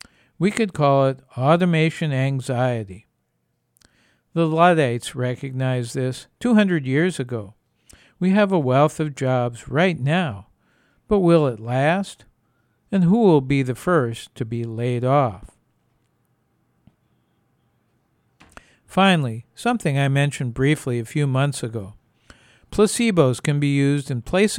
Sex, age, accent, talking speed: male, 60-79, American, 120 wpm